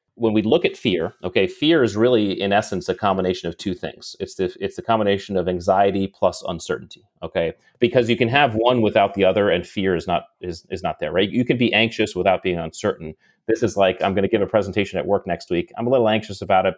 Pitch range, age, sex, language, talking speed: 90-110 Hz, 30-49, male, English, 245 wpm